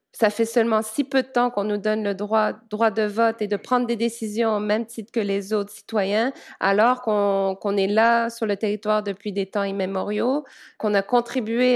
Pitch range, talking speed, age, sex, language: 200-230 Hz, 215 wpm, 20-39, female, English